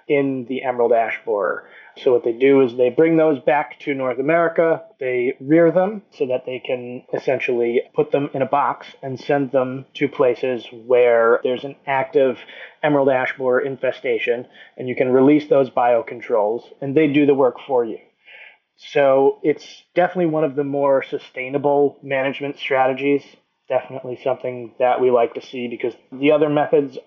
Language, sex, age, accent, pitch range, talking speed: English, male, 20-39, American, 125-155 Hz, 170 wpm